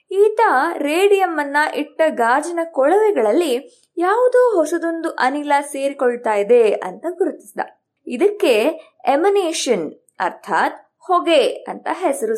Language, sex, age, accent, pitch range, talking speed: Kannada, female, 20-39, native, 255-375 Hz, 90 wpm